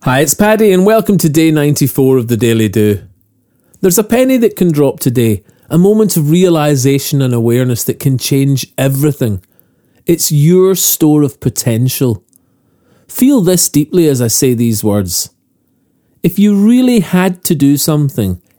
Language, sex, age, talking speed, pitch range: English, male, 40-59, 160 wpm, 125-180 Hz